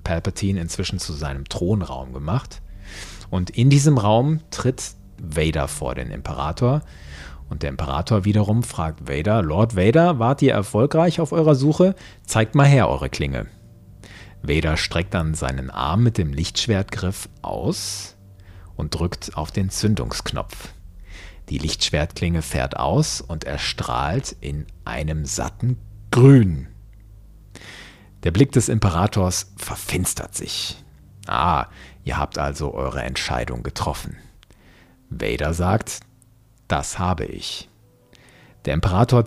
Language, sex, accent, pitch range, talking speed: German, male, German, 80-115 Hz, 120 wpm